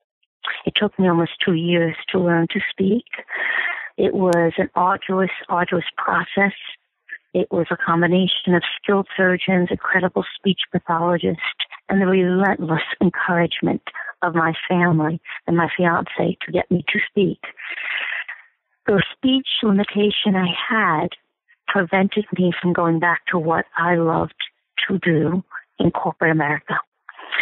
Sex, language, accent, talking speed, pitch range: female, English, American, 135 wpm, 170-205 Hz